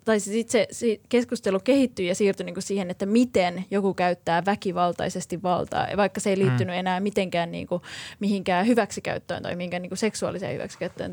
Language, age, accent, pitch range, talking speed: Finnish, 20-39, native, 180-220 Hz, 155 wpm